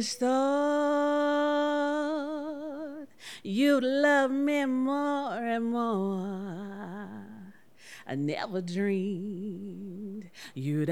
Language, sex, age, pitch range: English, female, 30-49, 195-265 Hz